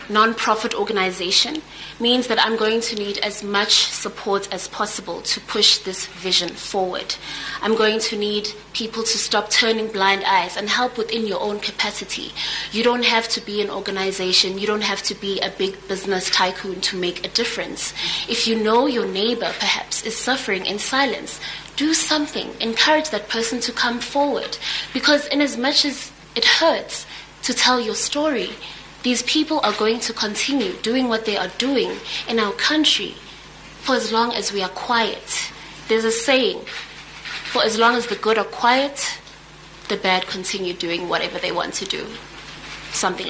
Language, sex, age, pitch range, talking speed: English, female, 20-39, 195-245 Hz, 175 wpm